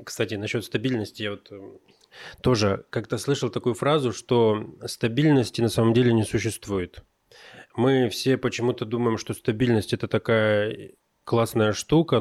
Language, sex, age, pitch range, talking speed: Russian, male, 20-39, 100-120 Hz, 135 wpm